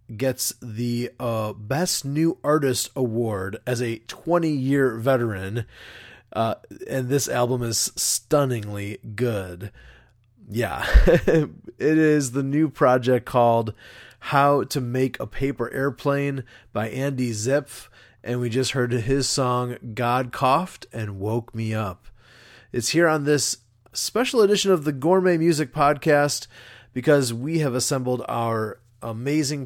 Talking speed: 125 wpm